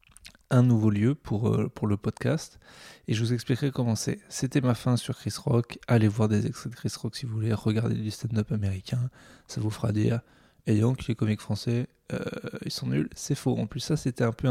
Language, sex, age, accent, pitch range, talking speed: French, male, 20-39, French, 115-160 Hz, 230 wpm